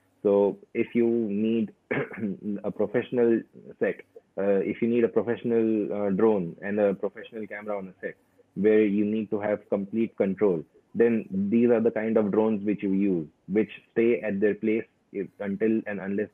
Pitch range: 100-110 Hz